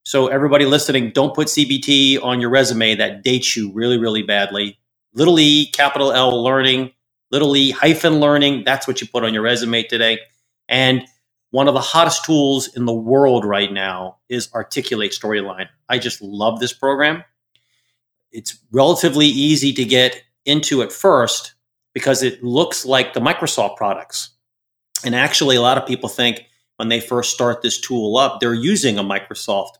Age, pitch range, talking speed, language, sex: 40-59, 115-140 Hz, 170 wpm, English, male